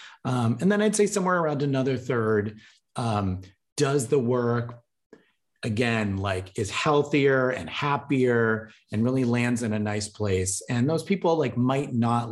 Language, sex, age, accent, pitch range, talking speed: English, male, 30-49, American, 95-120 Hz, 155 wpm